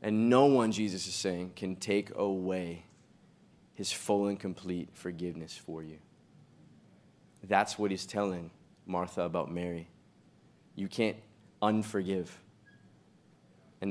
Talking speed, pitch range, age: 115 wpm, 90-110 Hz, 20-39